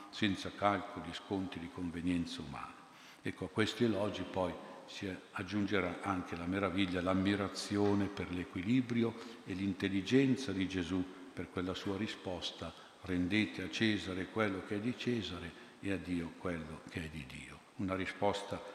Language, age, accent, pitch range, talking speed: Italian, 50-69, native, 90-110 Hz, 145 wpm